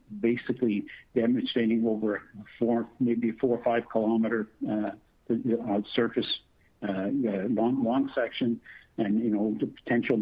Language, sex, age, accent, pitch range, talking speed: English, male, 60-79, American, 105-120 Hz, 115 wpm